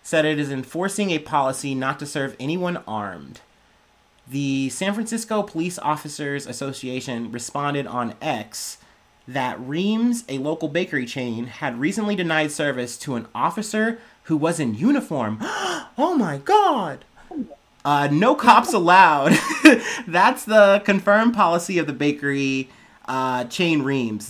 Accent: American